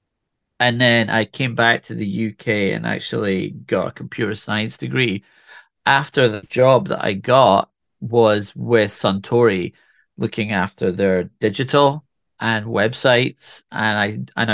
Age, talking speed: 30-49, 135 wpm